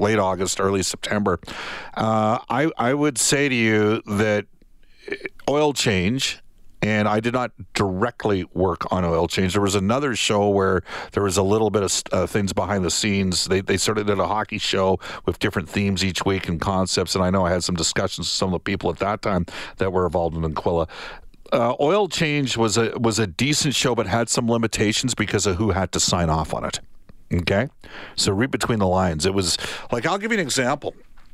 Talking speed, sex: 210 wpm, male